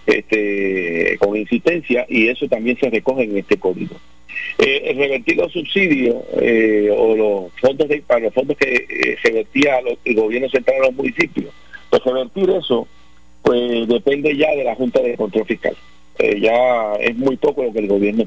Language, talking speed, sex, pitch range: Spanish, 185 wpm, male, 105-150 Hz